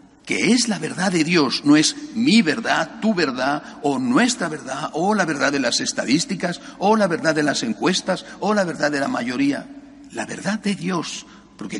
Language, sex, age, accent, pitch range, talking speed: Spanish, male, 60-79, Spanish, 195-270 Hz, 190 wpm